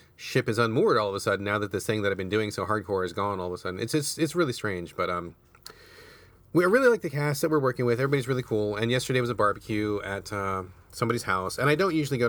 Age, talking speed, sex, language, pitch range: 30-49, 275 wpm, male, English, 100-135 Hz